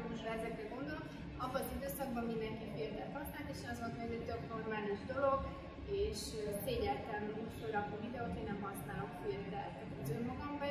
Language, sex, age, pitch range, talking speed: Hungarian, female, 20-39, 215-240 Hz, 150 wpm